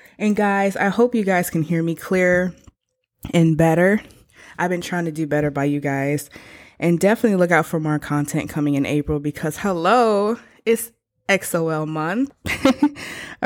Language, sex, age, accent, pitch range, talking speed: English, female, 20-39, American, 150-205 Hz, 160 wpm